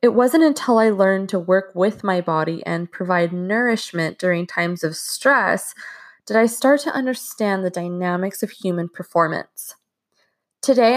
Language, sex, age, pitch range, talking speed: English, female, 20-39, 185-255 Hz, 155 wpm